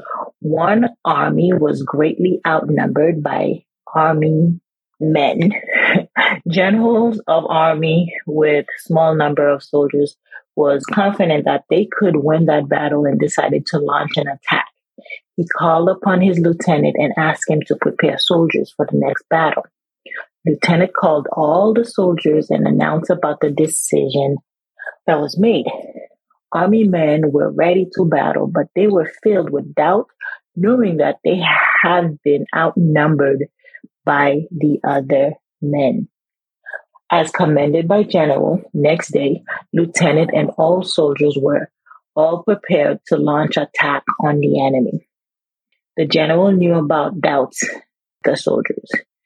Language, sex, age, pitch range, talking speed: English, female, 30-49, 150-185 Hz, 130 wpm